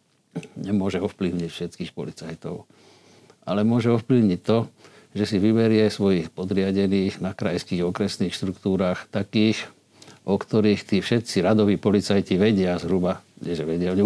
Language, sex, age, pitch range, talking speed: Slovak, male, 50-69, 95-115 Hz, 130 wpm